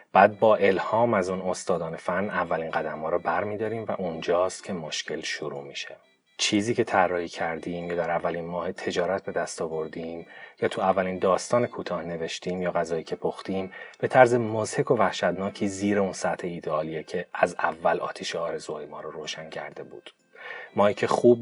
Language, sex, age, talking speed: Persian, male, 30-49, 175 wpm